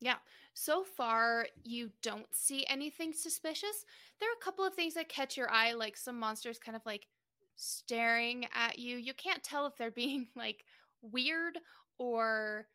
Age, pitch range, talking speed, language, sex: 20-39, 220-270 Hz, 170 wpm, English, female